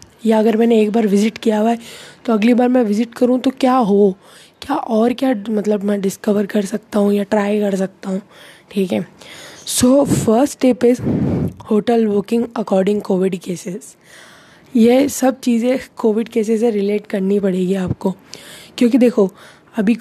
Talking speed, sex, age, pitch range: 170 wpm, female, 20-39, 205-235 Hz